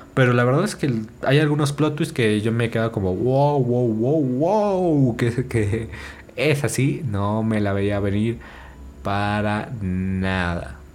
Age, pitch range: 20-39, 110-130 Hz